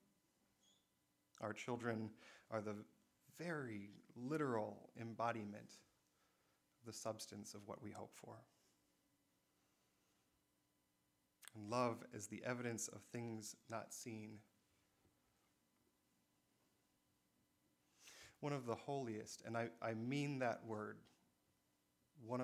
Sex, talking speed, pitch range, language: male, 90 wpm, 105-125 Hz, English